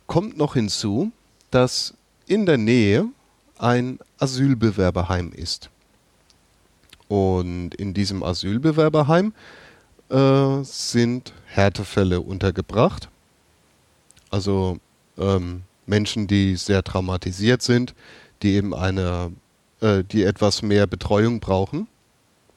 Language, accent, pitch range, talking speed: German, German, 95-125 Hz, 90 wpm